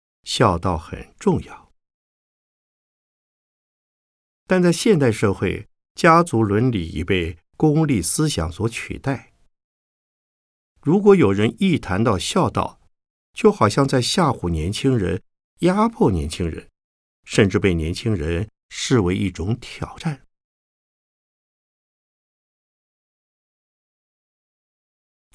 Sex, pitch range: male, 85-130 Hz